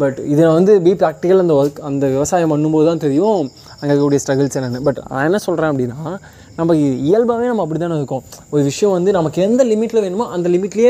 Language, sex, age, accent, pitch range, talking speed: Tamil, male, 20-39, native, 140-185 Hz, 200 wpm